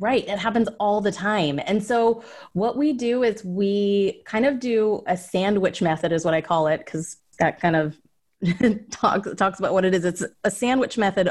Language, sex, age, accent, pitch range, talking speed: English, female, 30-49, American, 175-210 Hz, 200 wpm